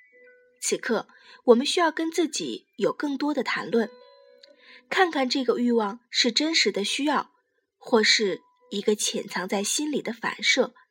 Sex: female